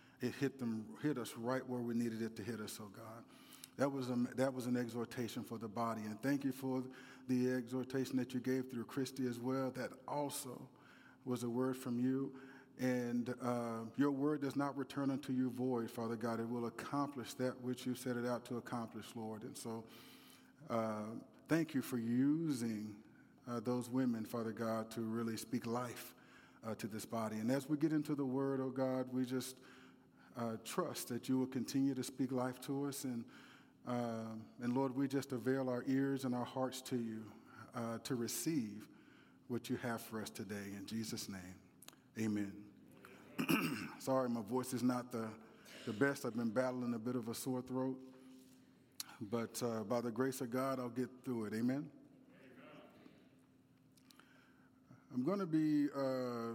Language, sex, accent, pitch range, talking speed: English, male, American, 115-130 Hz, 185 wpm